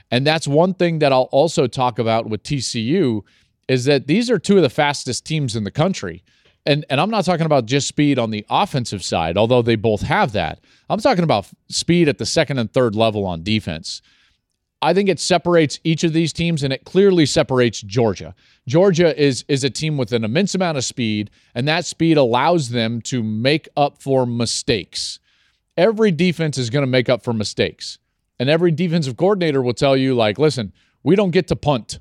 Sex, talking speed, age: male, 205 wpm, 40-59